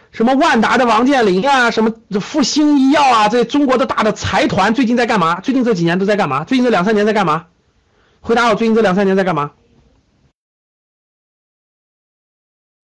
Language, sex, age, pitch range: Chinese, male, 50-69, 170-270 Hz